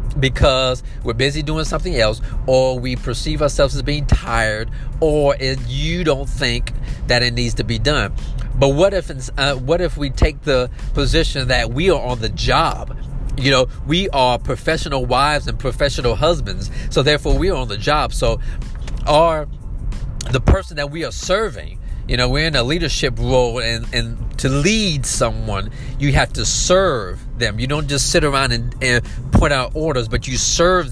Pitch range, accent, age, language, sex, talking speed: 120-145 Hz, American, 40-59, English, male, 185 wpm